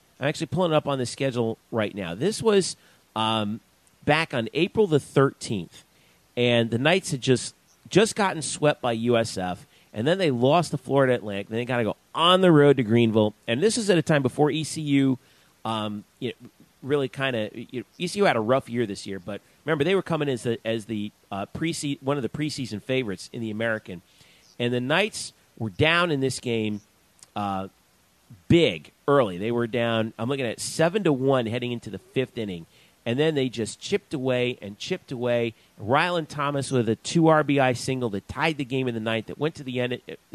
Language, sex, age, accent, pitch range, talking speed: English, male, 40-59, American, 115-150 Hz, 210 wpm